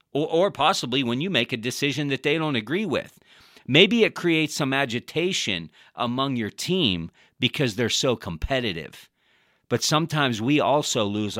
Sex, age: male, 40-59